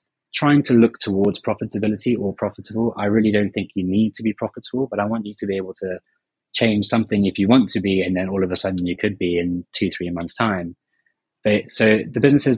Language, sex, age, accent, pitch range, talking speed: English, male, 20-39, British, 90-110 Hz, 235 wpm